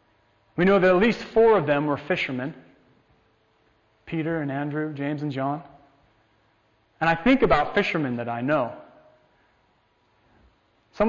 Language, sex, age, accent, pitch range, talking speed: English, male, 30-49, American, 130-190 Hz, 135 wpm